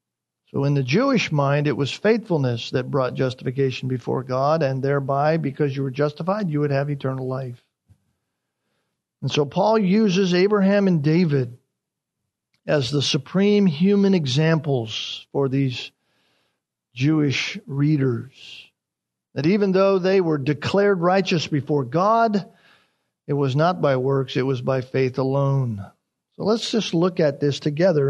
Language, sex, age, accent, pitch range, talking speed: English, male, 50-69, American, 135-190 Hz, 140 wpm